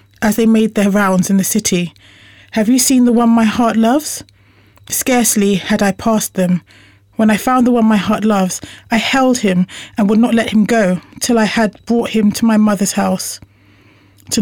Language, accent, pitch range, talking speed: English, British, 180-230 Hz, 200 wpm